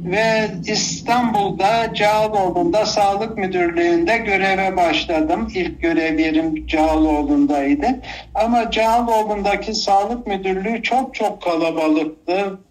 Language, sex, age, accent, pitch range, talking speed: Turkish, male, 60-79, native, 175-245 Hz, 85 wpm